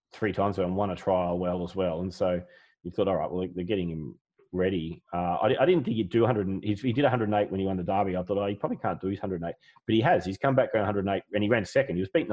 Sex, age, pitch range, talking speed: male, 30-49, 90-105 Hz, 305 wpm